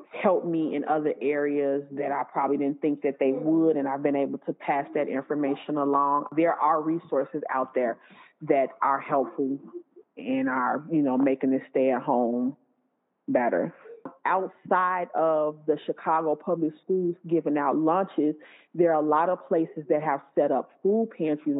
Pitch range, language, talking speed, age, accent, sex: 145-175 Hz, English, 170 wpm, 30-49, American, female